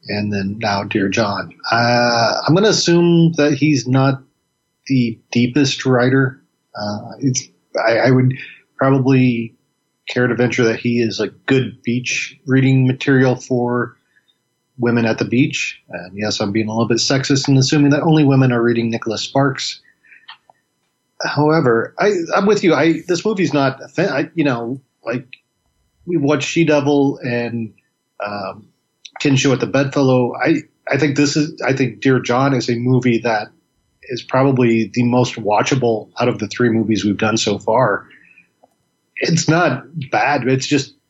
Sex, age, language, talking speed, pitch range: male, 40-59, English, 160 wpm, 115-140 Hz